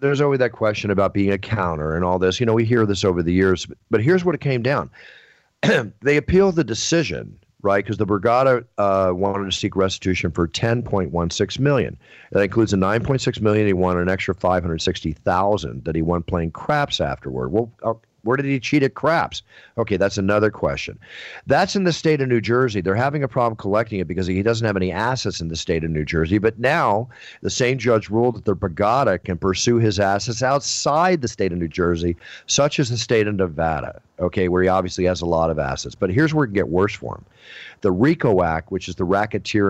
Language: English